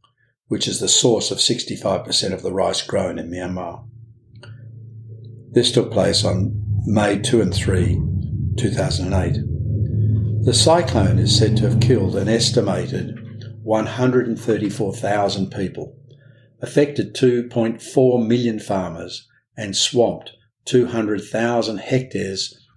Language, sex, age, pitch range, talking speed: English, male, 50-69, 100-125 Hz, 105 wpm